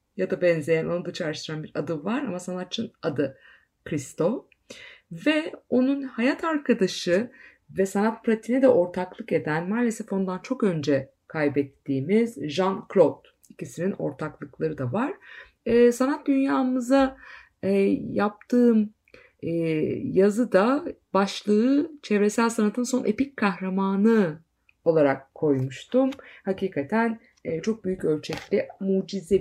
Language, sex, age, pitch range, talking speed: Turkish, female, 50-69, 165-230 Hz, 110 wpm